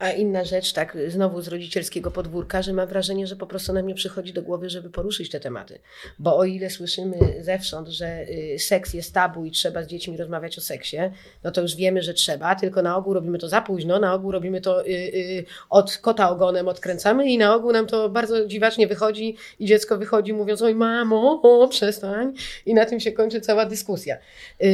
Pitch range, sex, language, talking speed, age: 180-220 Hz, female, Polish, 200 wpm, 30-49